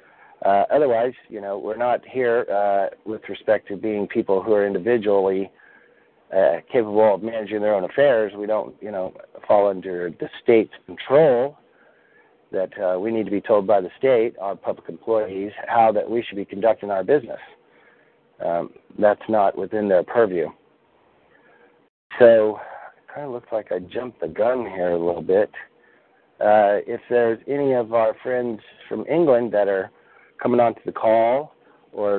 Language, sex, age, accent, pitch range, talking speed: English, male, 40-59, American, 100-115 Hz, 165 wpm